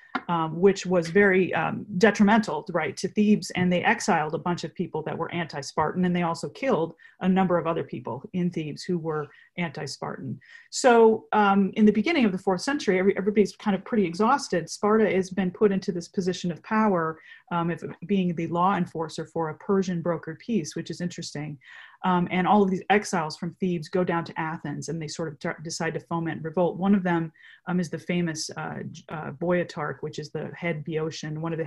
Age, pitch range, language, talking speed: 30-49, 160-195 Hz, English, 200 wpm